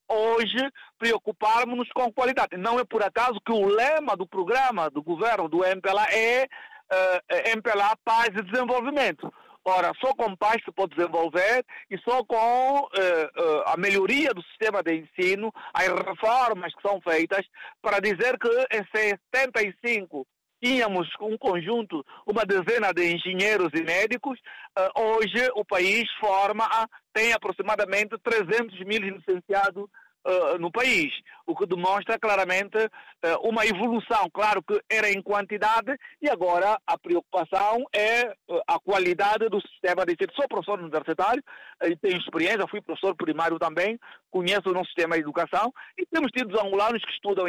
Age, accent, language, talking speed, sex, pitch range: 50-69, Brazilian, Portuguese, 145 wpm, male, 175-230 Hz